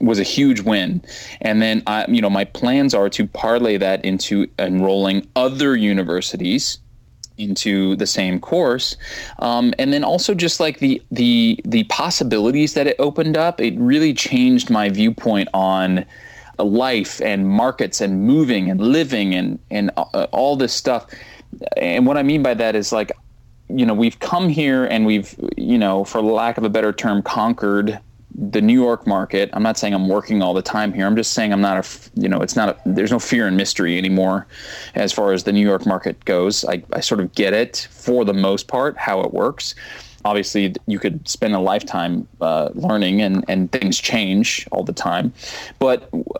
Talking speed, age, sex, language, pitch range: 190 wpm, 20-39, male, English, 100-150 Hz